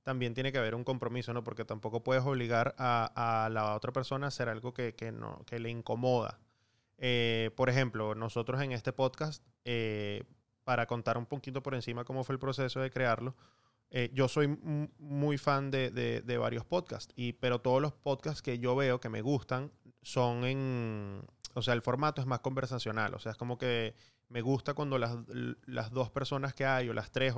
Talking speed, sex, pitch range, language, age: 205 wpm, male, 115-135 Hz, Spanish, 20-39